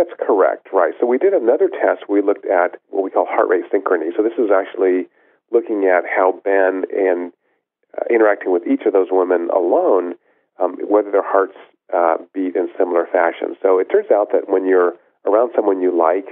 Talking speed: 200 wpm